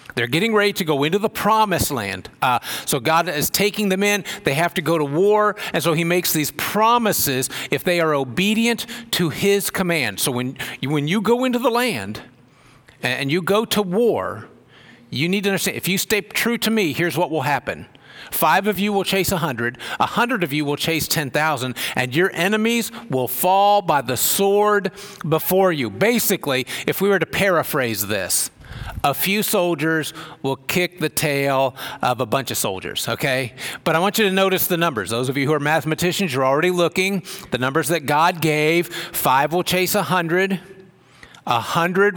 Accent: American